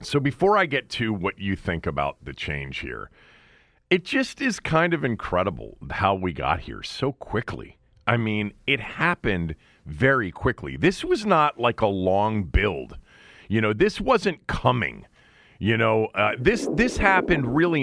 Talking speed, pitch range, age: 165 wpm, 105-155 Hz, 40-59